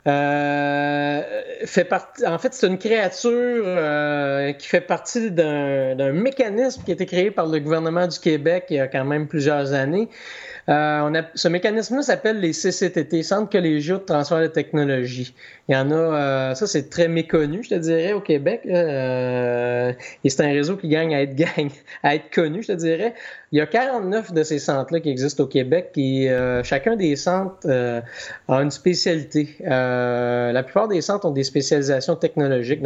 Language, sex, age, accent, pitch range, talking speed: French, male, 30-49, Canadian, 135-175 Hz, 190 wpm